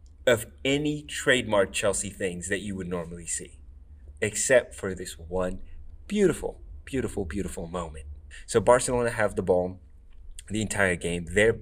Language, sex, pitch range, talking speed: English, male, 80-100 Hz, 140 wpm